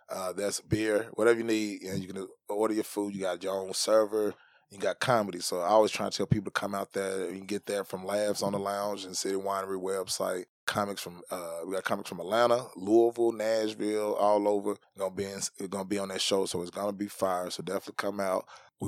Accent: American